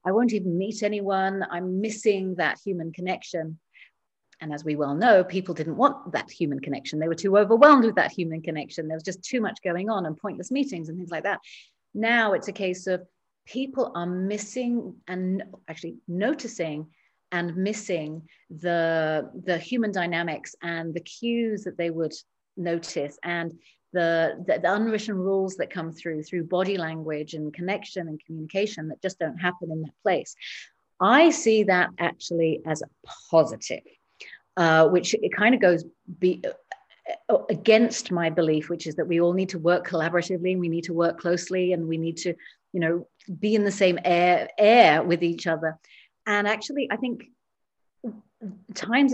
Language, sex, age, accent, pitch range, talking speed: English, female, 30-49, British, 165-210 Hz, 175 wpm